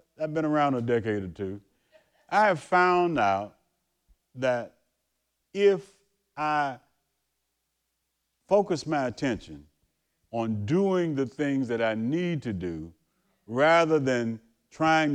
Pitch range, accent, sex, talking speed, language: 120-165 Hz, American, male, 115 wpm, English